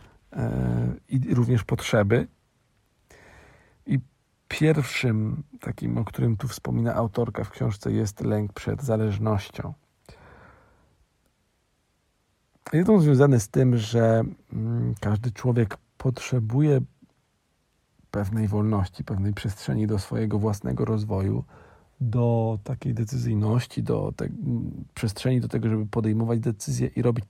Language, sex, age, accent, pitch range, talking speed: Polish, male, 40-59, native, 105-130 Hz, 100 wpm